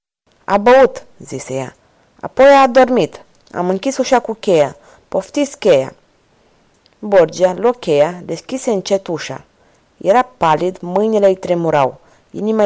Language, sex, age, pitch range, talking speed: Romanian, female, 30-49, 170-210 Hz, 125 wpm